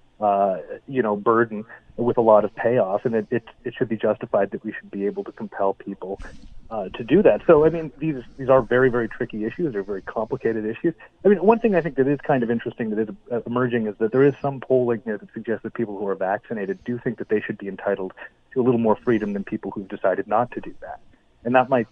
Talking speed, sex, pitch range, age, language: 250 wpm, male, 105-130 Hz, 30-49, English